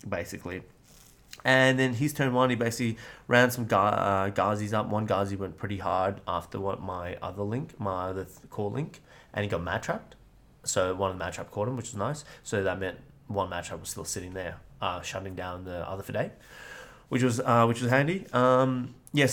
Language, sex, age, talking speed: English, male, 20-39, 210 wpm